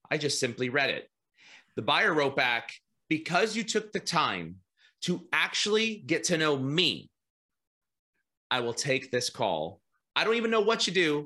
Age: 30-49